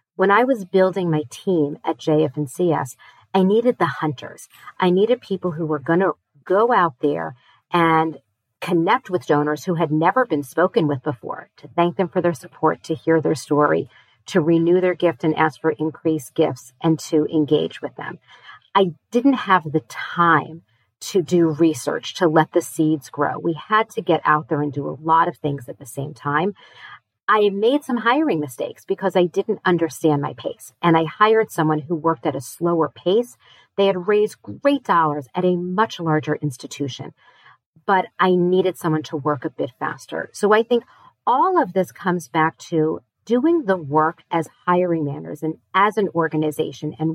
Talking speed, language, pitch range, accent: 185 wpm, English, 155-190 Hz, American